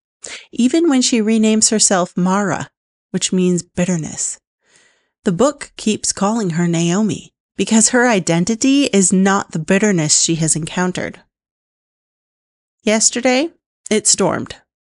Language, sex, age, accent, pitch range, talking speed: English, female, 30-49, American, 175-230 Hz, 110 wpm